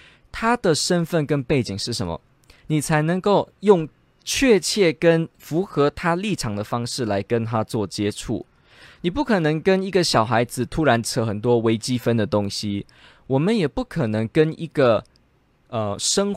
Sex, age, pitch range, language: male, 20-39, 115-175 Hz, Chinese